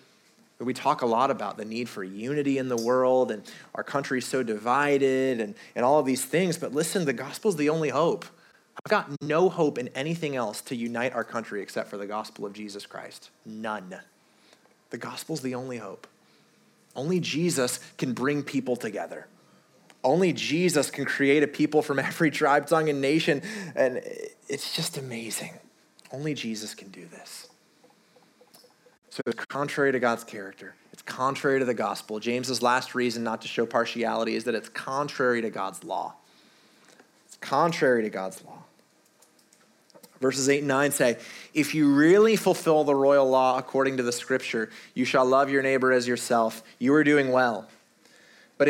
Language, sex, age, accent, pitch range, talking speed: English, male, 30-49, American, 120-150 Hz, 175 wpm